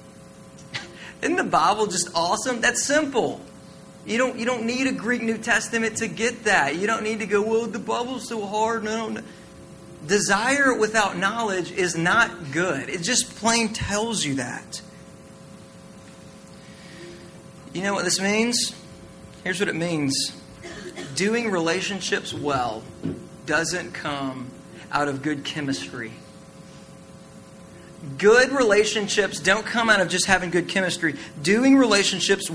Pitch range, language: 155-220 Hz, English